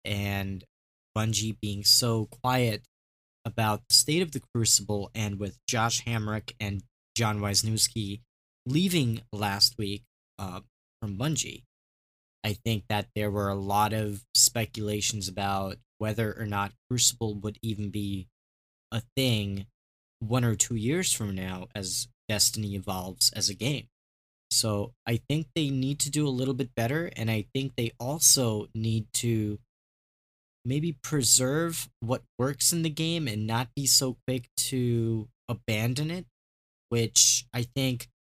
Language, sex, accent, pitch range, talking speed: English, male, American, 105-125 Hz, 145 wpm